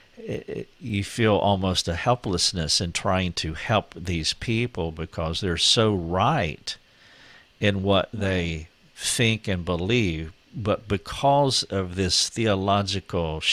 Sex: male